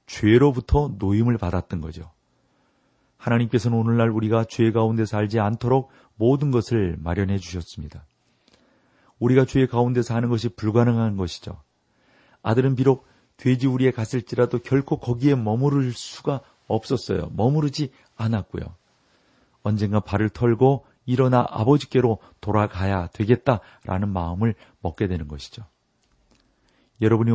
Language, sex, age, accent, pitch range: Korean, male, 40-59, native, 105-125 Hz